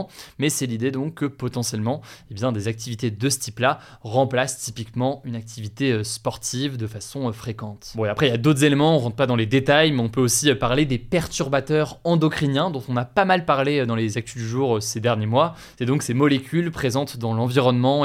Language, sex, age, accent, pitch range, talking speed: French, male, 20-39, French, 120-155 Hz, 215 wpm